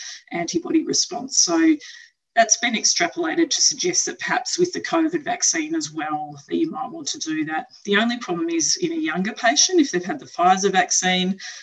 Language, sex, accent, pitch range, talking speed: English, female, Australian, 285-345 Hz, 190 wpm